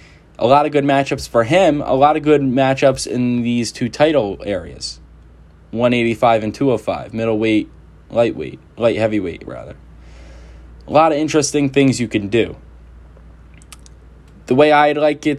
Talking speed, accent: 150 wpm, American